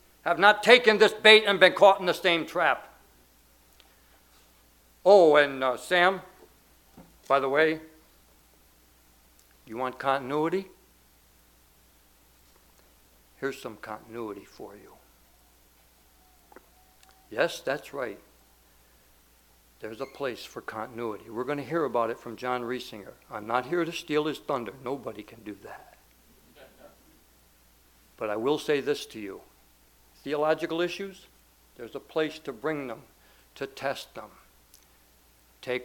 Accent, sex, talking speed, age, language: American, male, 125 wpm, 60-79, English